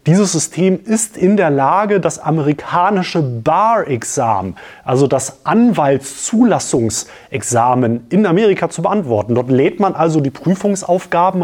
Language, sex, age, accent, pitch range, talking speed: German, male, 30-49, German, 125-165 Hz, 115 wpm